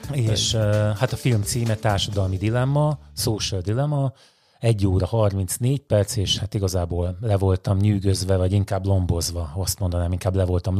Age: 30-49